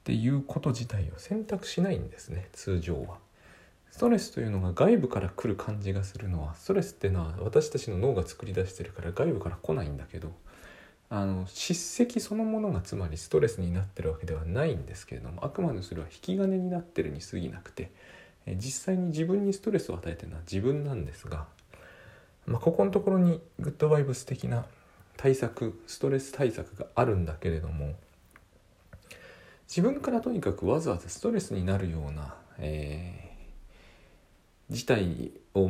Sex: male